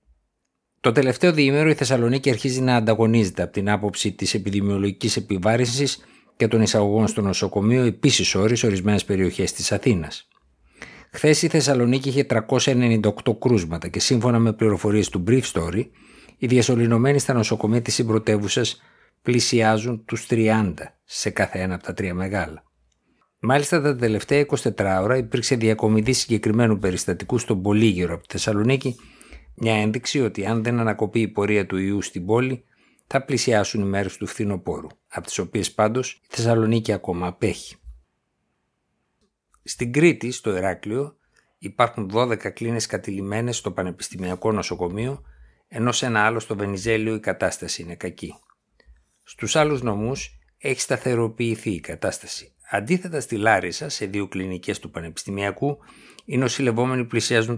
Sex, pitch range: male, 100-125 Hz